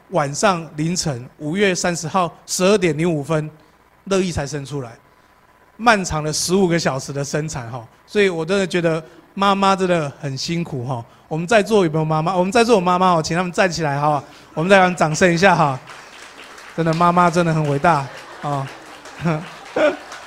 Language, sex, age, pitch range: Chinese, male, 30-49, 155-200 Hz